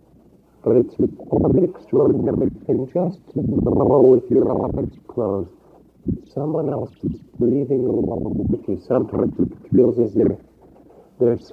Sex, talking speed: male, 115 wpm